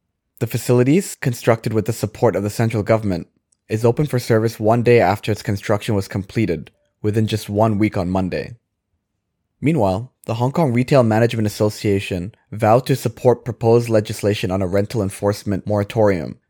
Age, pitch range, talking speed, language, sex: 20-39, 100-115 Hz, 160 wpm, English, male